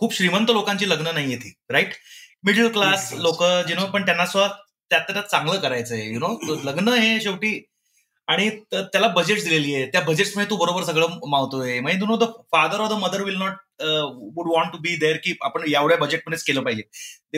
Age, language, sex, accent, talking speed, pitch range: 30-49, Marathi, male, native, 200 wpm, 155-230 Hz